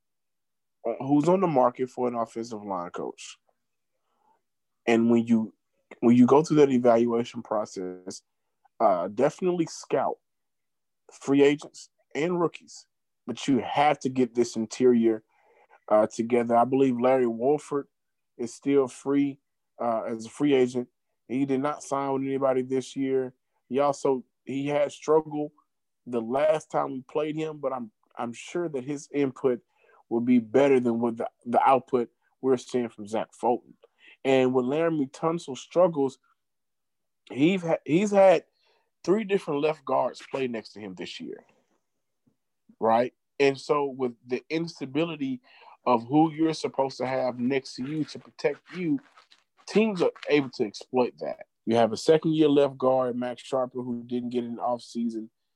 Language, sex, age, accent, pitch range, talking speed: English, male, 20-39, American, 120-150 Hz, 155 wpm